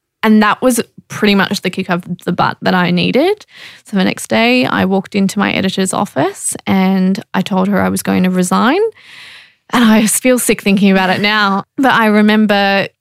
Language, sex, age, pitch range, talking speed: English, female, 10-29, 185-230 Hz, 200 wpm